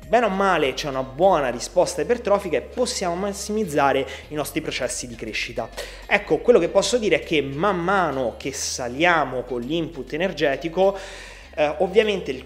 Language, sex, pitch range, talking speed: Italian, male, 130-195 Hz, 160 wpm